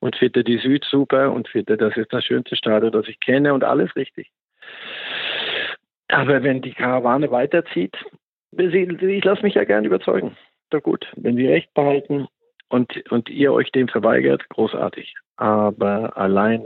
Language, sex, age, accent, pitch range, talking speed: German, male, 50-69, German, 110-135 Hz, 155 wpm